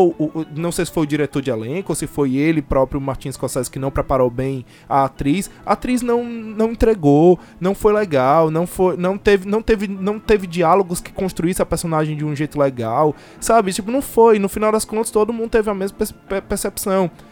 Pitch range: 150-210 Hz